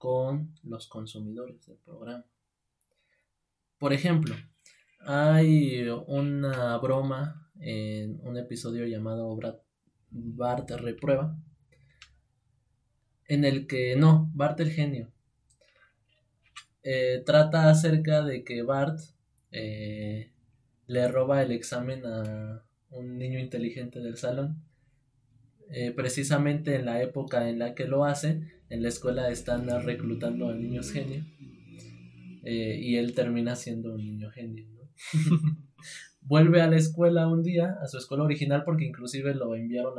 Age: 20-39